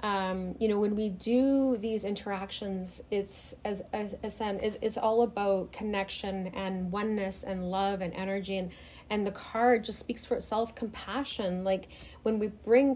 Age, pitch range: 30-49, 195-225 Hz